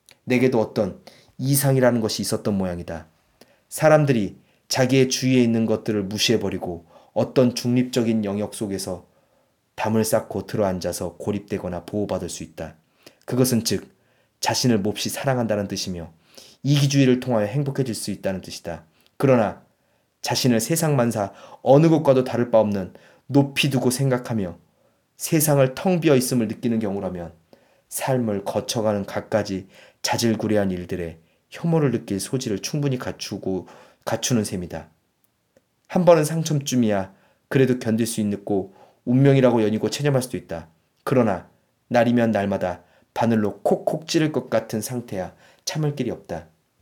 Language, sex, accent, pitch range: Korean, male, native, 100-135 Hz